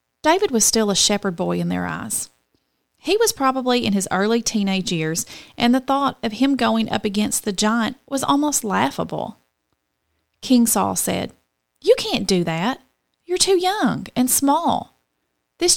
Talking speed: 165 wpm